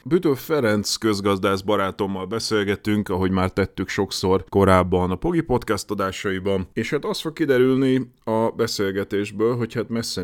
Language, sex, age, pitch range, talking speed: Hungarian, male, 30-49, 90-110 Hz, 130 wpm